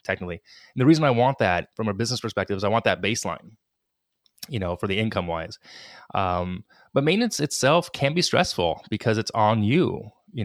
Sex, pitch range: male, 100-125 Hz